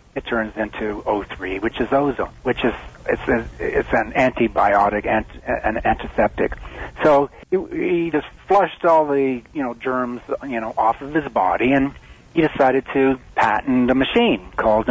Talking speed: 155 wpm